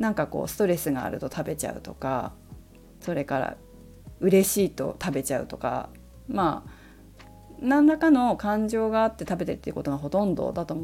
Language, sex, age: Japanese, female, 40-59